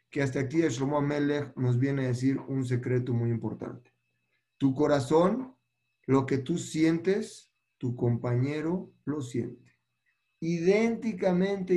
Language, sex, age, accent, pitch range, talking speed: Spanish, male, 40-59, Mexican, 125-175 Hz, 120 wpm